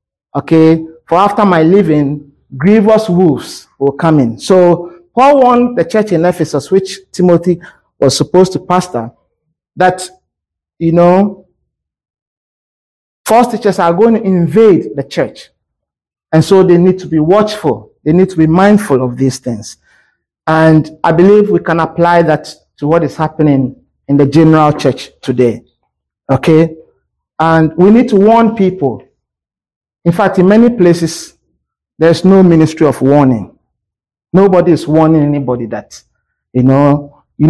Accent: Nigerian